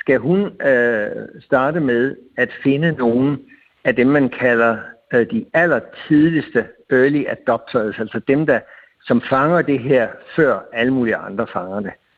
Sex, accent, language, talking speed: male, native, Danish, 150 wpm